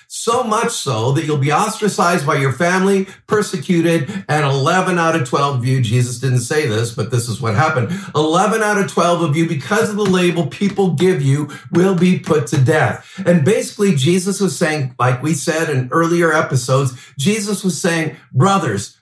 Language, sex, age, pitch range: English, male, 50-69, 145-200 Hz